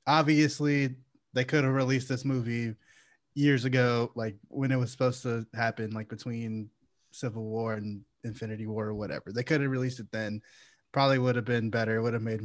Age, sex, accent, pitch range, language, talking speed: 20-39, male, American, 115-145 Hz, English, 195 wpm